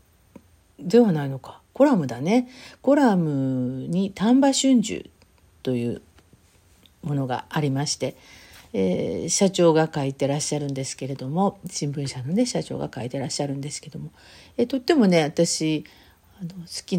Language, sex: Japanese, female